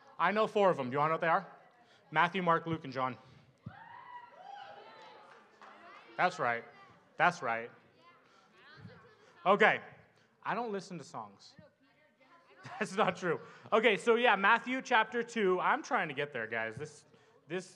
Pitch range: 140-230 Hz